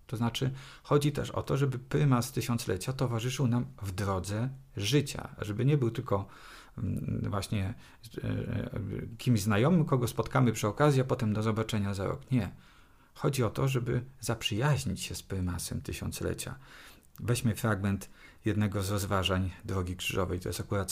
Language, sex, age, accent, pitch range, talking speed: Polish, male, 40-59, native, 100-130 Hz, 145 wpm